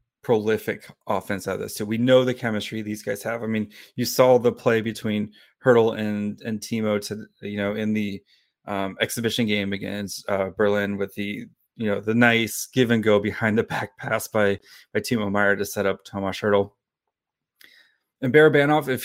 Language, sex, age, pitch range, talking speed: English, male, 30-49, 105-125 Hz, 195 wpm